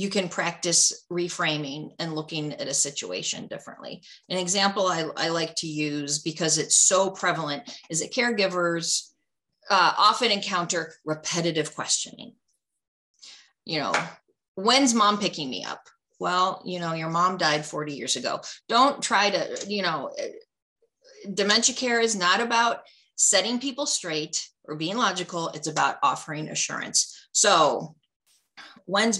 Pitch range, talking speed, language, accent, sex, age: 165-240 Hz, 140 wpm, English, American, female, 40-59